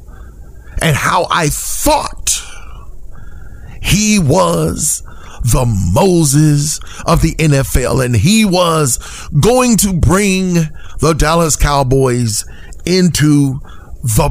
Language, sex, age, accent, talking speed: English, male, 40-59, American, 90 wpm